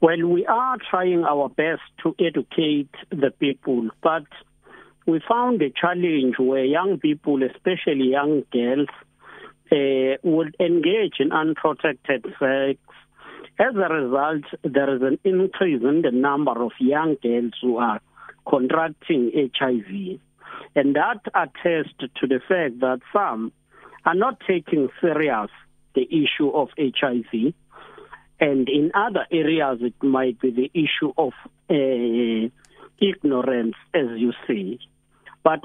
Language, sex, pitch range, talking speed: English, male, 130-175 Hz, 130 wpm